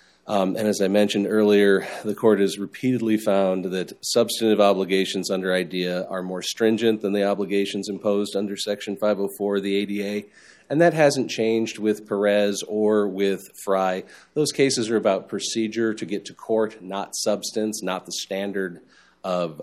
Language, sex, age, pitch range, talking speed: English, male, 40-59, 95-110 Hz, 160 wpm